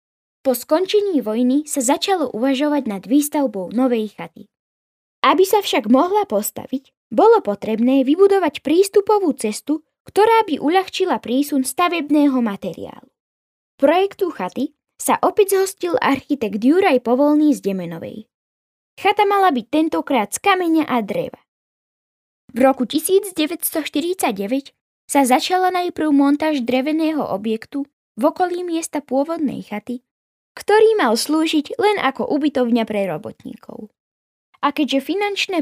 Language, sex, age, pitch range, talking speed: Slovak, female, 10-29, 245-330 Hz, 120 wpm